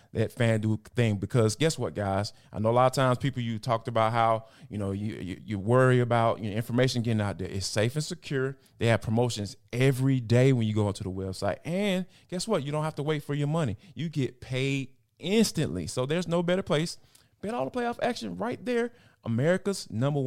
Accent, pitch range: American, 110-150 Hz